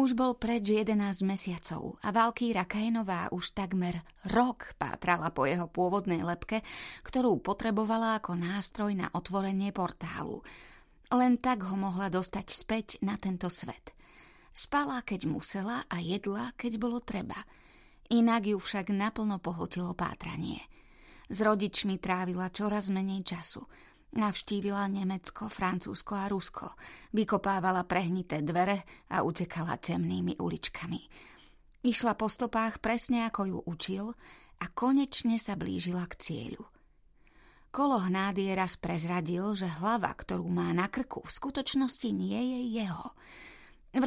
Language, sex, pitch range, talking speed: Slovak, female, 180-225 Hz, 125 wpm